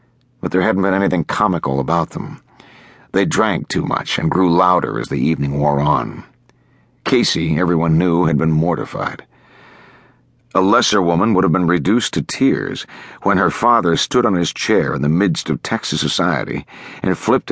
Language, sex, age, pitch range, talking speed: English, male, 60-79, 80-100 Hz, 170 wpm